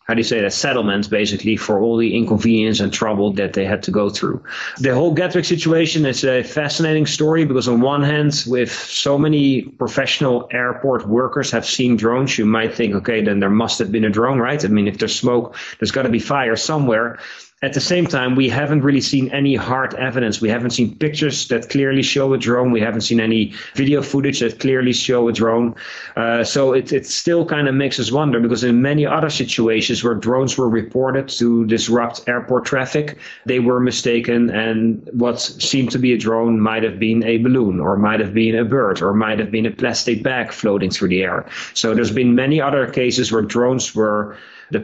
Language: English